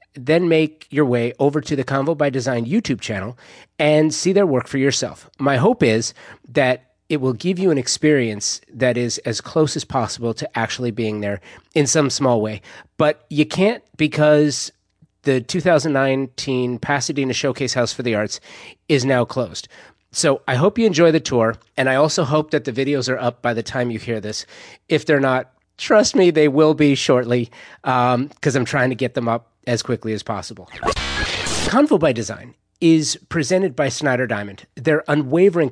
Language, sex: English, male